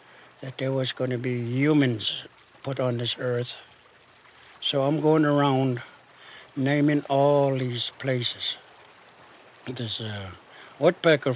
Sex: male